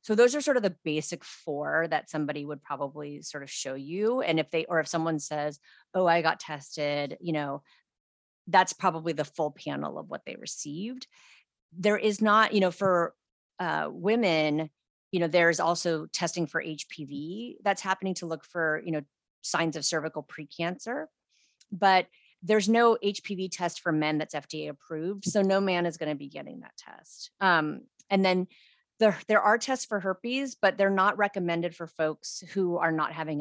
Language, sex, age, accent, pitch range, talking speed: English, female, 30-49, American, 155-195 Hz, 185 wpm